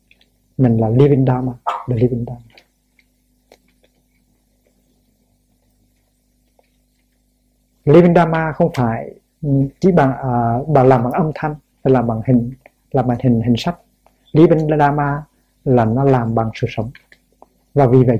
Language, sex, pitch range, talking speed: Vietnamese, male, 120-145 Hz, 130 wpm